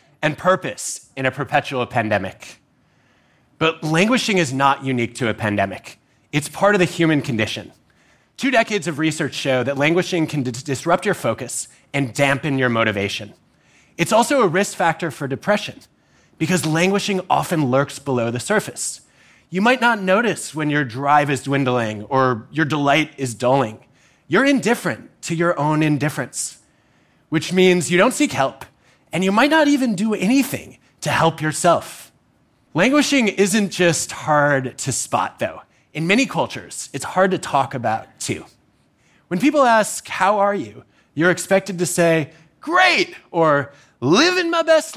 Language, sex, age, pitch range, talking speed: English, male, 30-49, 135-195 Hz, 155 wpm